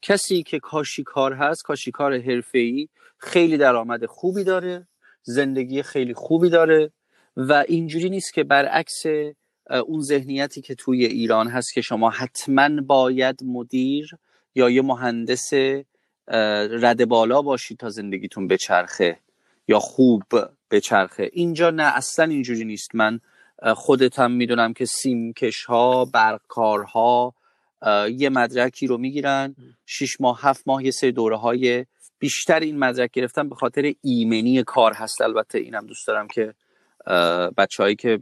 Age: 30-49